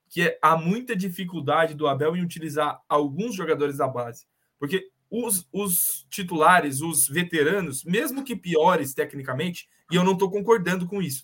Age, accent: 20-39, Brazilian